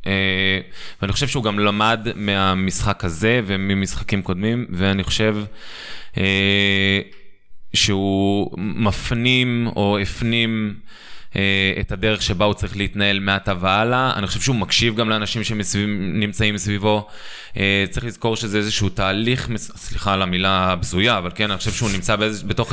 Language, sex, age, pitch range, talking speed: Hebrew, male, 20-39, 100-115 Hz, 135 wpm